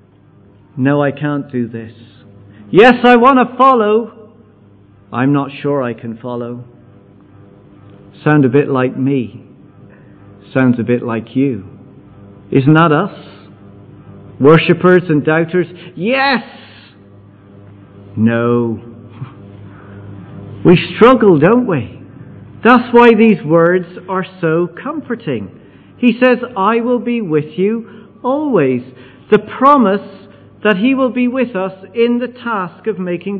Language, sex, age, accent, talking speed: English, male, 50-69, British, 120 wpm